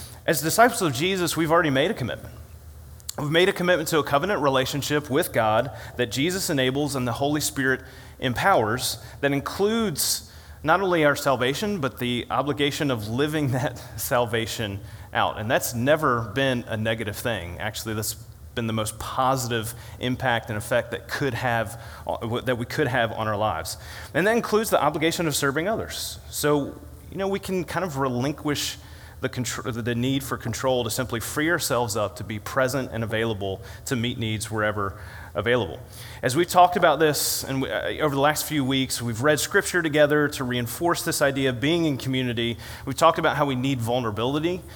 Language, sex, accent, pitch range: English, male, American, 115-150 Hz